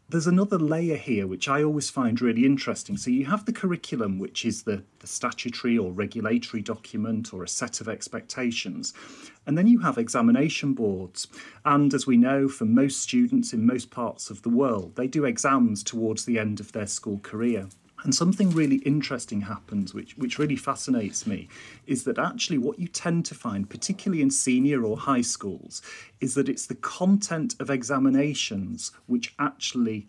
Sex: male